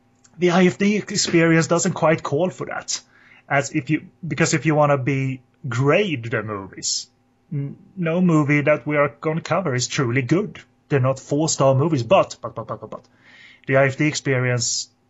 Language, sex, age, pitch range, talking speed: English, male, 30-49, 120-145 Hz, 175 wpm